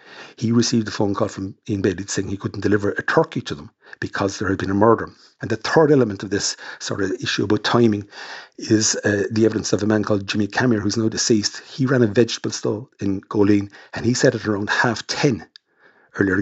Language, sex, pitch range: English, male, 100-120 Hz